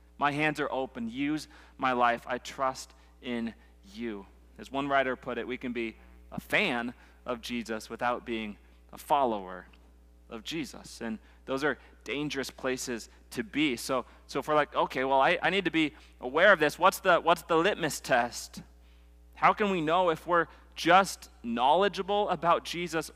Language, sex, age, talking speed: English, male, 30-49, 170 wpm